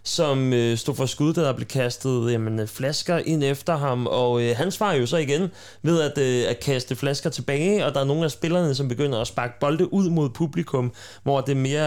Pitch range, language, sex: 125-165 Hz, Danish, male